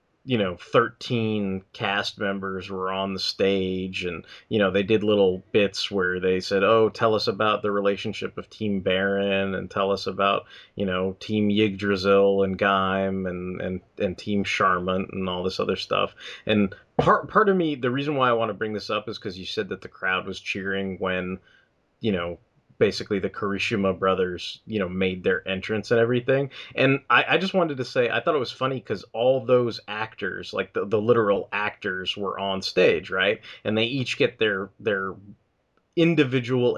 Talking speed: 190 wpm